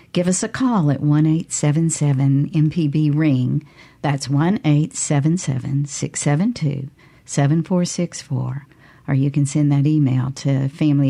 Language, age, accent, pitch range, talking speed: English, 50-69, American, 140-185 Hz, 150 wpm